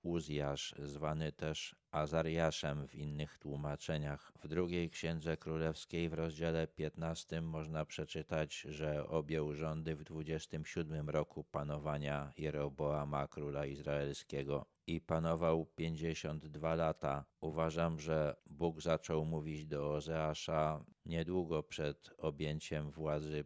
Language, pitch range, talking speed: Polish, 75-80 Hz, 105 wpm